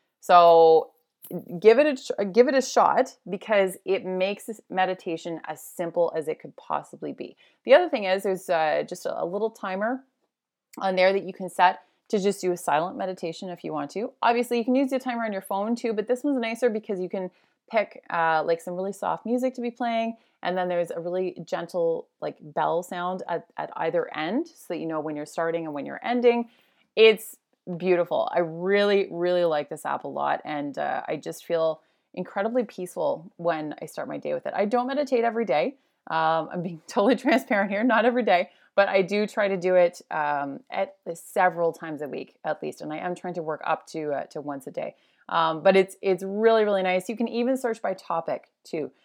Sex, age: female, 30-49